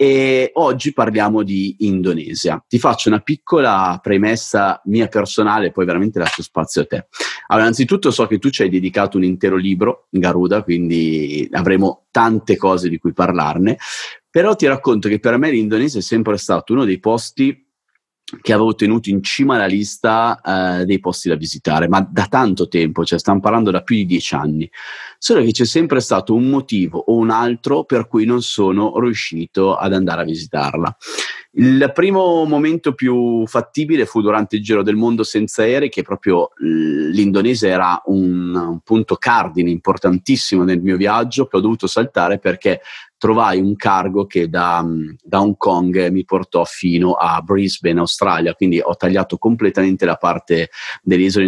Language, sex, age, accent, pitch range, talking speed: Italian, male, 30-49, native, 90-115 Hz, 170 wpm